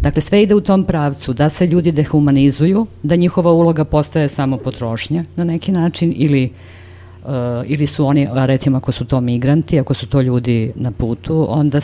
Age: 50-69